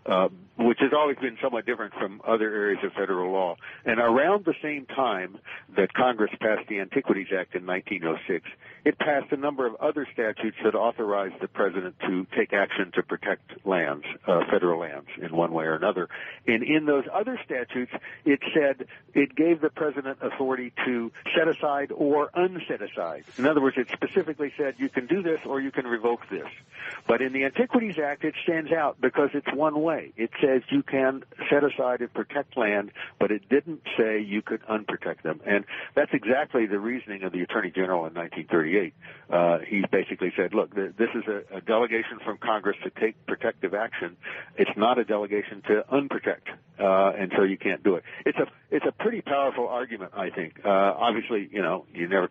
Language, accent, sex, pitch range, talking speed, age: English, American, male, 105-145 Hz, 190 wpm, 60-79